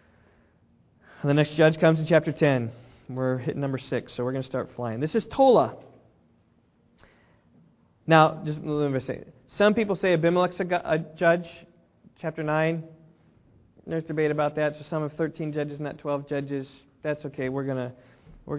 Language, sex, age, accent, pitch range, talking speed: English, male, 20-39, American, 130-180 Hz, 160 wpm